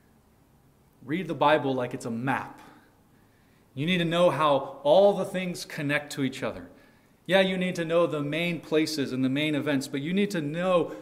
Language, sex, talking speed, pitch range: English, male, 195 wpm, 125-155 Hz